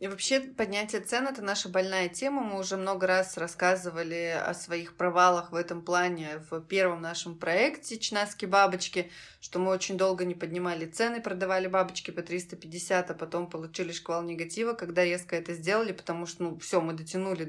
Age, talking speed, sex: 20-39, 180 wpm, female